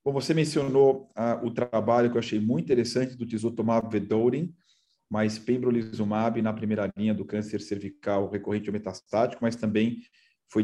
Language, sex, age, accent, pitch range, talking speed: Portuguese, male, 40-59, Brazilian, 105-120 Hz, 150 wpm